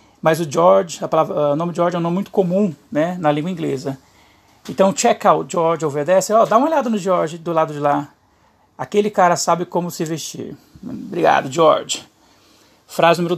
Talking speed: 195 wpm